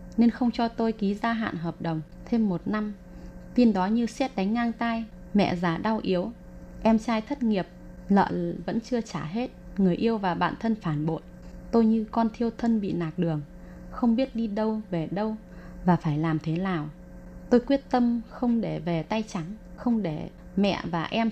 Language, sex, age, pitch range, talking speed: Vietnamese, female, 20-39, 175-225 Hz, 200 wpm